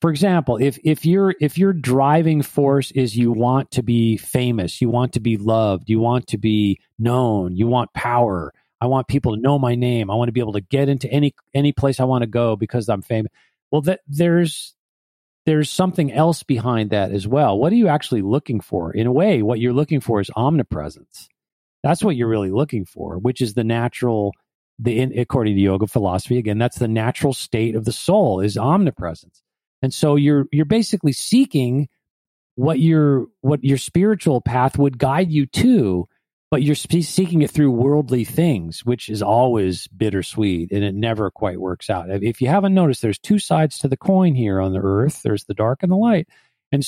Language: English